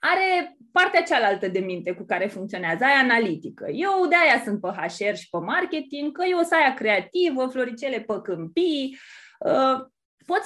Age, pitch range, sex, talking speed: 20-39, 240-330 Hz, female, 155 wpm